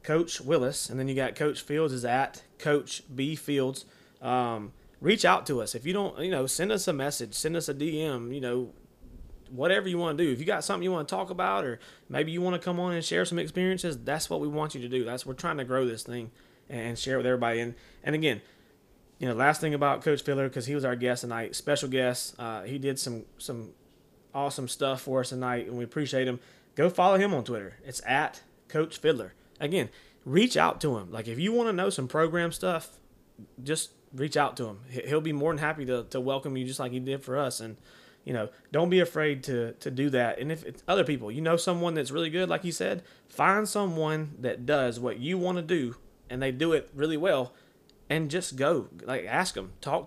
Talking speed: 235 wpm